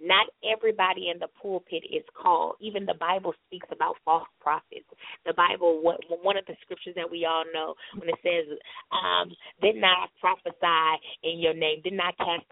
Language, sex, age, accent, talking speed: English, female, 20-39, American, 180 wpm